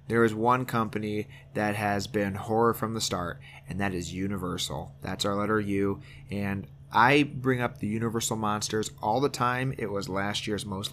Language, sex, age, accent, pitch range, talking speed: English, male, 30-49, American, 105-130 Hz, 185 wpm